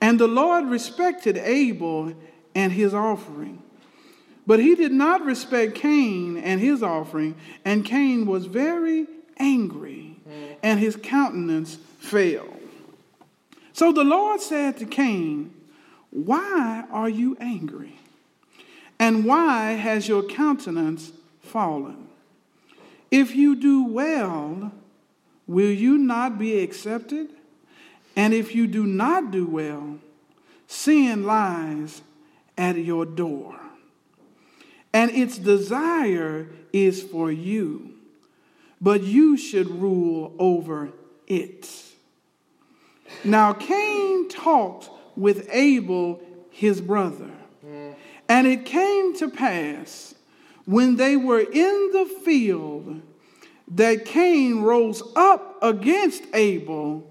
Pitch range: 185-300 Hz